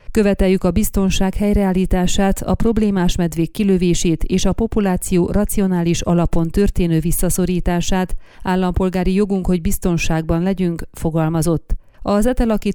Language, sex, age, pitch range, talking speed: Hungarian, female, 30-49, 175-200 Hz, 110 wpm